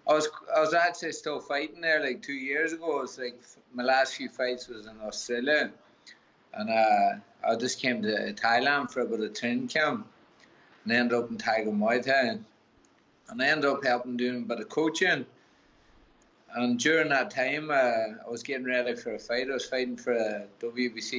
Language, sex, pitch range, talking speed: English, male, 120-140 Hz, 200 wpm